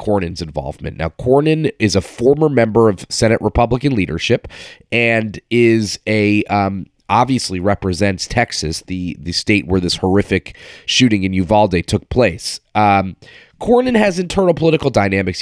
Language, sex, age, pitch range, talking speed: English, male, 30-49, 95-115 Hz, 140 wpm